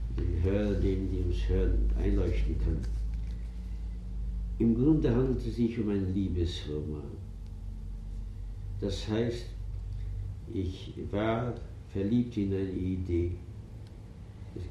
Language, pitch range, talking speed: German, 90-110 Hz, 100 wpm